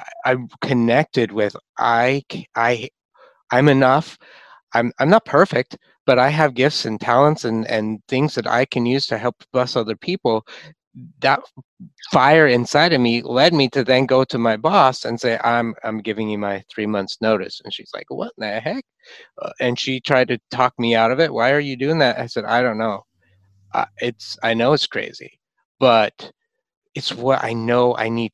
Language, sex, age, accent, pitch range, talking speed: English, male, 30-49, American, 115-140 Hz, 195 wpm